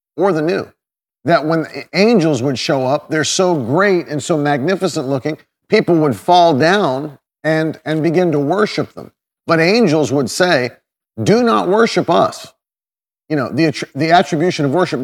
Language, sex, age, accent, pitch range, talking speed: English, male, 40-59, American, 150-185 Hz, 170 wpm